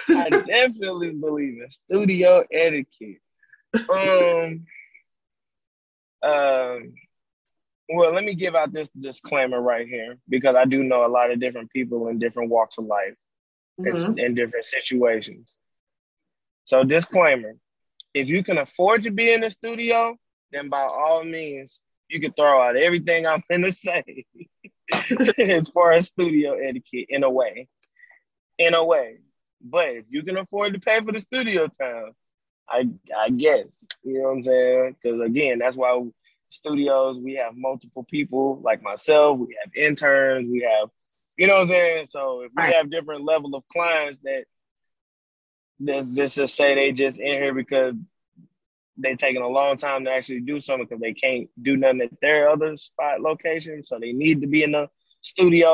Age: 20-39